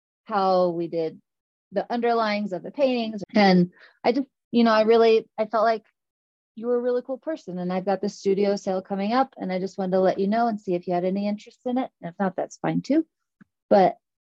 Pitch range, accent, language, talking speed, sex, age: 170-205 Hz, American, English, 235 wpm, female, 30-49